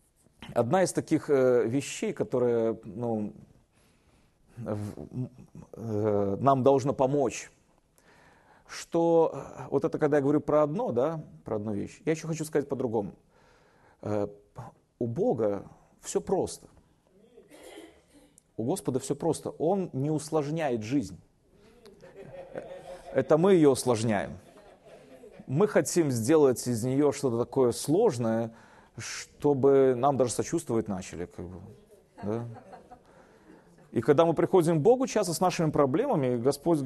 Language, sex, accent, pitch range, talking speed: Russian, male, native, 120-165 Hz, 115 wpm